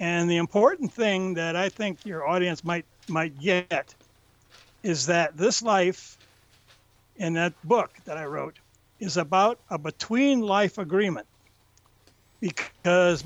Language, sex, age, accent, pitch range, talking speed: English, male, 60-79, American, 115-185 Hz, 125 wpm